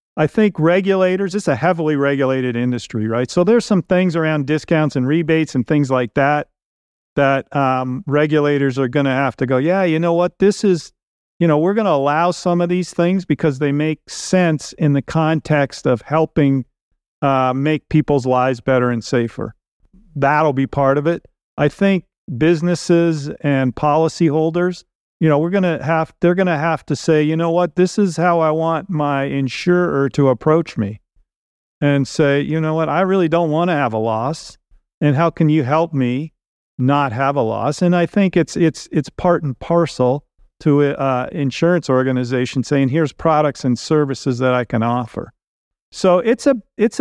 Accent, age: American, 50-69